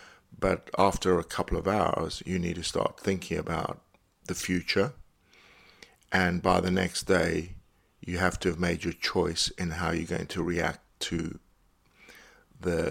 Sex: male